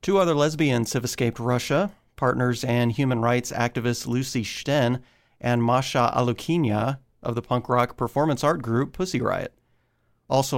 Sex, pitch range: male, 120-135 Hz